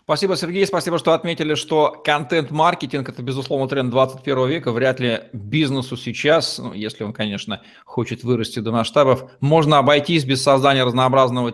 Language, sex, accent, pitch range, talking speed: Russian, male, native, 115-140 Hz, 150 wpm